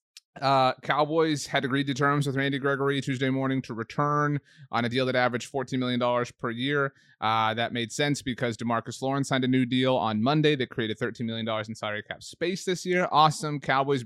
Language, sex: English, male